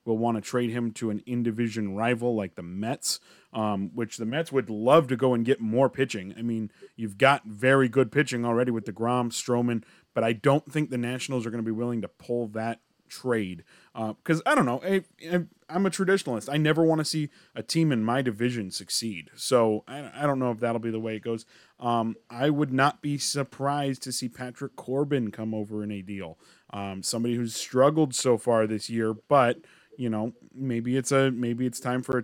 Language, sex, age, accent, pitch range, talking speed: English, male, 30-49, American, 115-135 Hz, 220 wpm